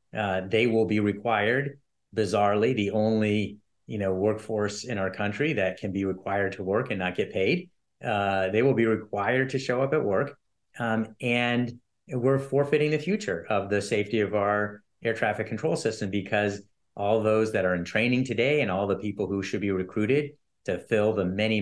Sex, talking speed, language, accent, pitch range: male, 190 wpm, English, American, 95-115 Hz